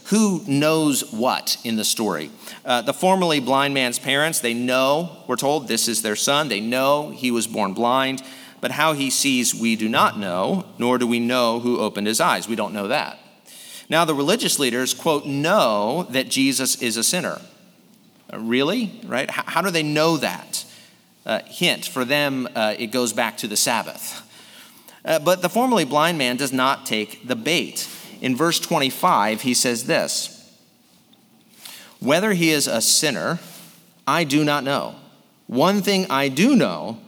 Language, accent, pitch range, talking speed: English, American, 120-160 Hz, 175 wpm